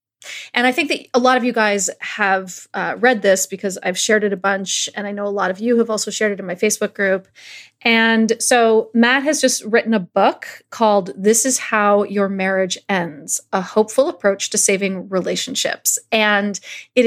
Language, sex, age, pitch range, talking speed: English, female, 30-49, 200-245 Hz, 200 wpm